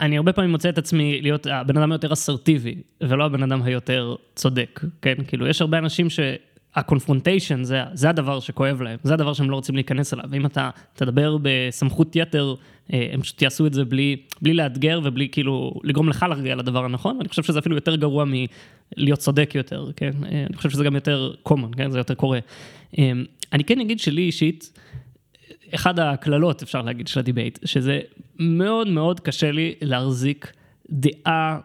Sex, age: male, 20-39